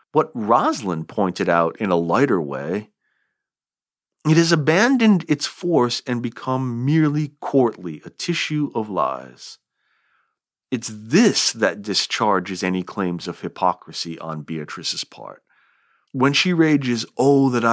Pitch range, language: 90-130 Hz, English